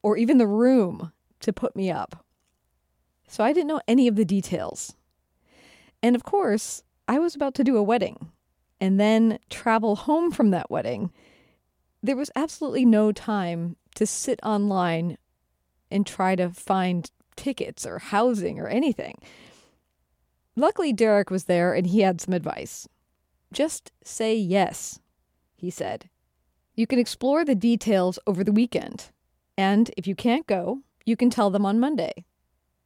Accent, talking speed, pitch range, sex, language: American, 150 wpm, 155-230 Hz, female, English